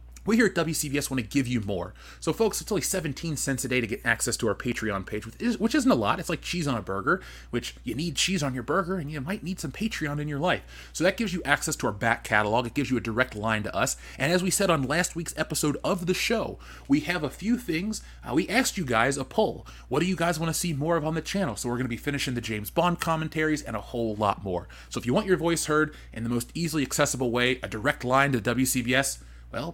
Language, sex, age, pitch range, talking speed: English, male, 30-49, 115-170 Hz, 275 wpm